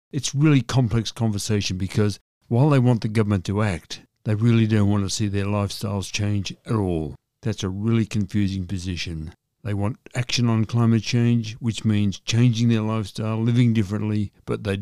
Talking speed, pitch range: 175 wpm, 95-110 Hz